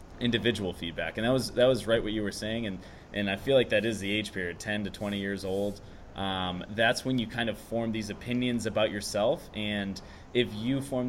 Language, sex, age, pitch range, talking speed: English, male, 20-39, 95-115 Hz, 225 wpm